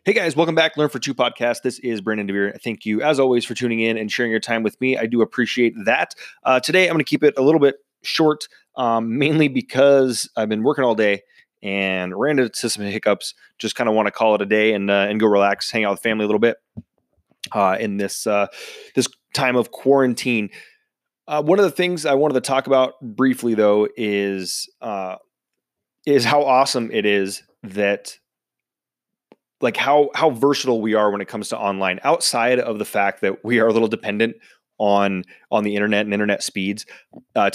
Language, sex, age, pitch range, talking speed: English, male, 20-39, 105-130 Hz, 210 wpm